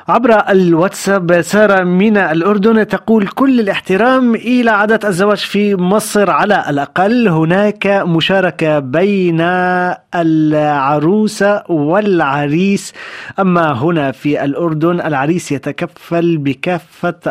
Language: Arabic